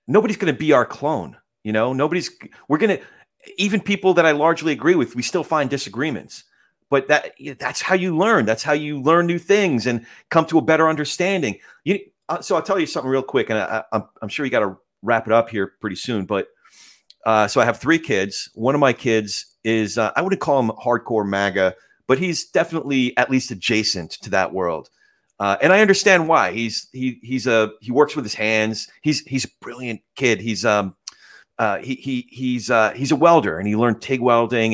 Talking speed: 220 wpm